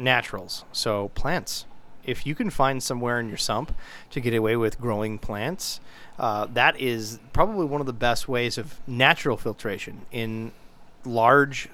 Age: 30-49